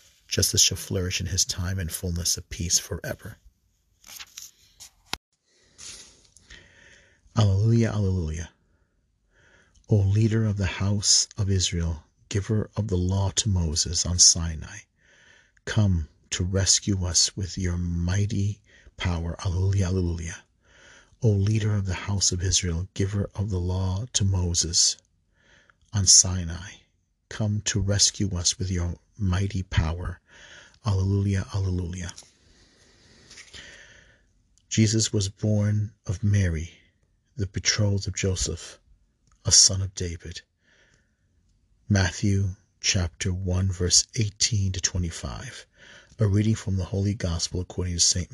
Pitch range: 90-100 Hz